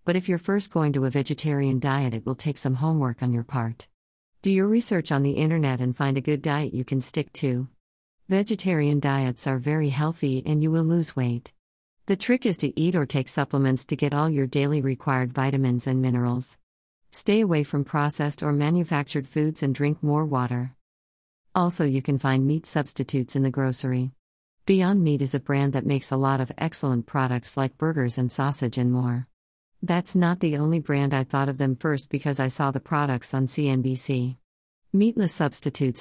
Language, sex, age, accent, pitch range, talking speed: English, female, 50-69, American, 130-155 Hz, 195 wpm